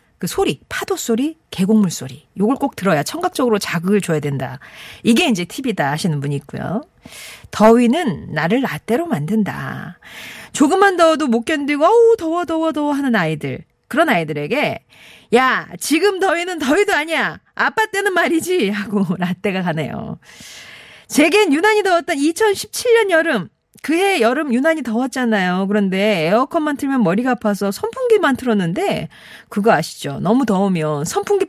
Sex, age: female, 40-59